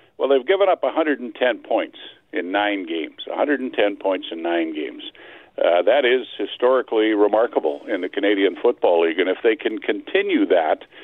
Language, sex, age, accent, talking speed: English, male, 50-69, American, 165 wpm